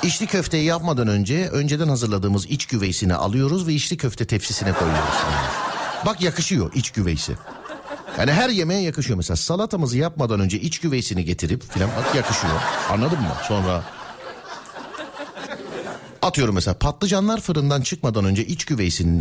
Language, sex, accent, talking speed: Turkish, male, native, 135 wpm